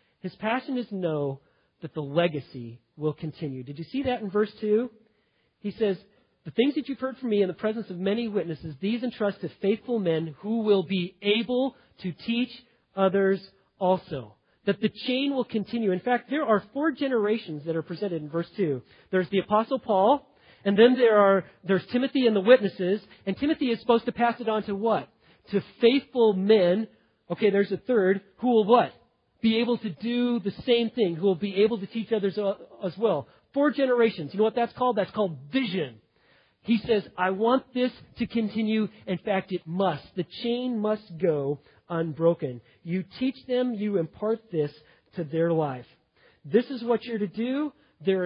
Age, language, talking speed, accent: 40-59, English, 190 wpm, American